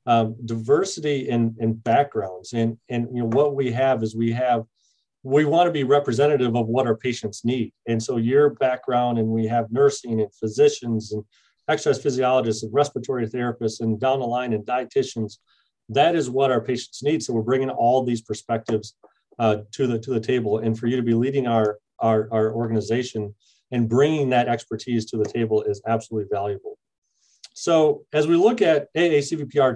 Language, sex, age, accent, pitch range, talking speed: English, male, 40-59, American, 115-140 Hz, 185 wpm